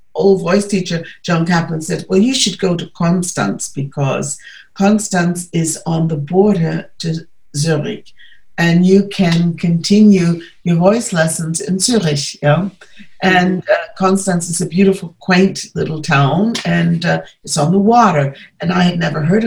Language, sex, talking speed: English, female, 155 wpm